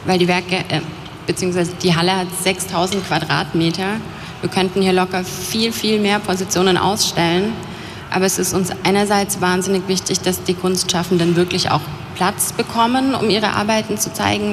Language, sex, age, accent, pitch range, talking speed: German, female, 30-49, German, 165-185 Hz, 160 wpm